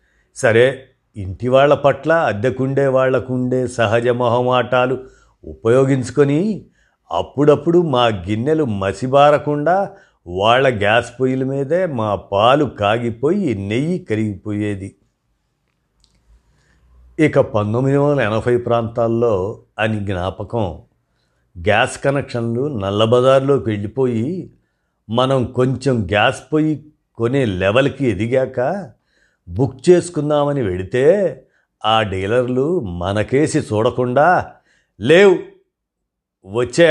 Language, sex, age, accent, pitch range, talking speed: Telugu, male, 50-69, native, 105-140 Hz, 80 wpm